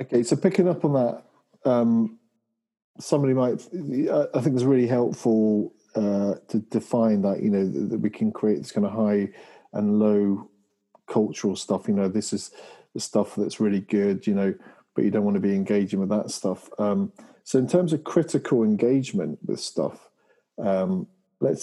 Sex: male